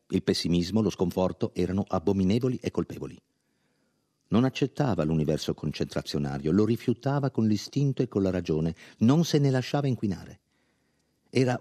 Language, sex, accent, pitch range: Italian, male, native, 90-130 Hz